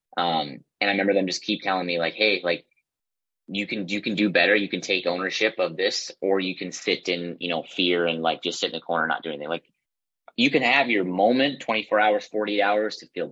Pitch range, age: 90-105 Hz, 30-49